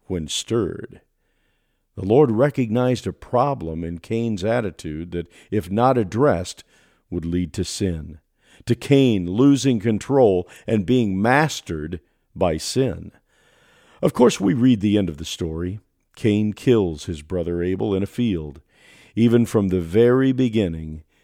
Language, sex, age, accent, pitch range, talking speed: English, male, 50-69, American, 90-120 Hz, 140 wpm